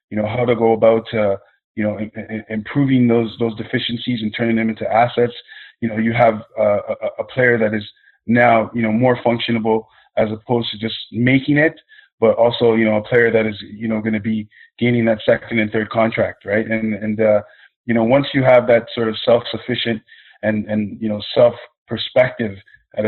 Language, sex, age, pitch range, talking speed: English, male, 20-39, 110-125 Hz, 210 wpm